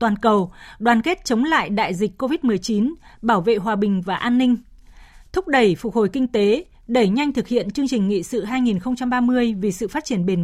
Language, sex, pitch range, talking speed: Vietnamese, female, 205-260 Hz, 205 wpm